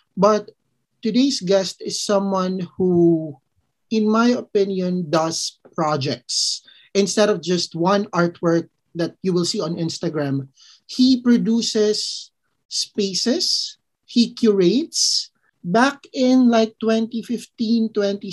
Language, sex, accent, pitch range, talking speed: Filipino, male, native, 170-210 Hz, 100 wpm